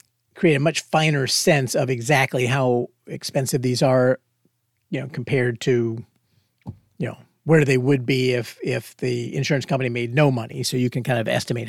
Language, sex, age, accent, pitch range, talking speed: English, male, 50-69, American, 120-150 Hz, 180 wpm